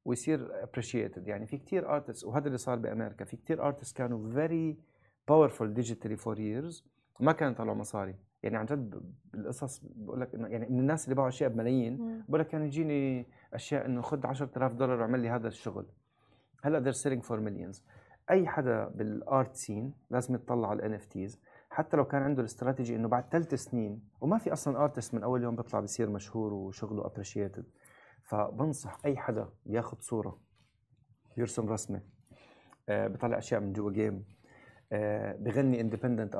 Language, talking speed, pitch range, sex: English, 150 wpm, 105-130 Hz, male